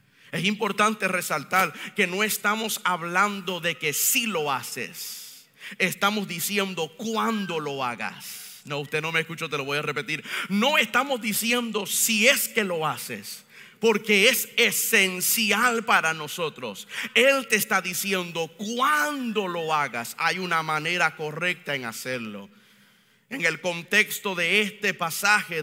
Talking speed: 145 wpm